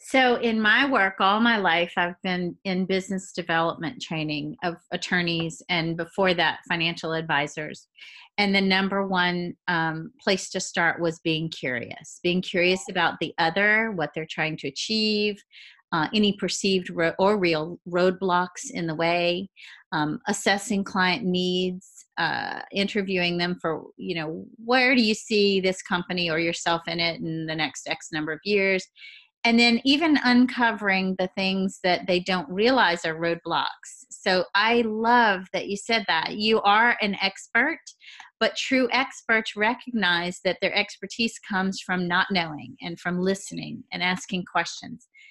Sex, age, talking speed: female, 30-49, 155 wpm